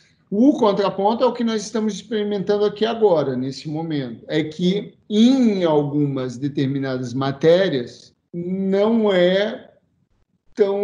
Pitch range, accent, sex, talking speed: 145-180 Hz, Brazilian, male, 115 wpm